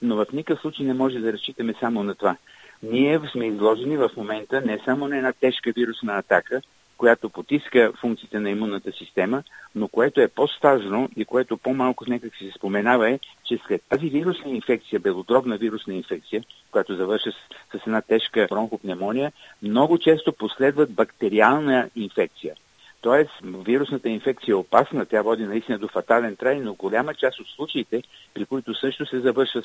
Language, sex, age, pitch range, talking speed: Bulgarian, male, 50-69, 110-135 Hz, 165 wpm